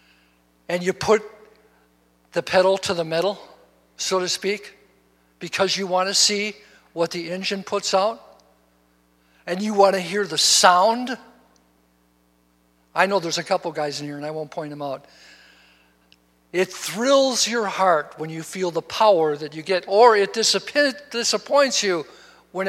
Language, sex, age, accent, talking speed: English, male, 60-79, American, 155 wpm